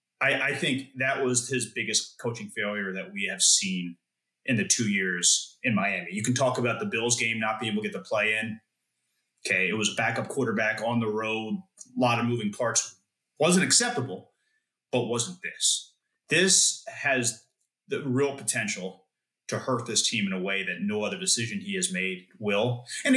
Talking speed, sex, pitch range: 190 wpm, male, 110-145 Hz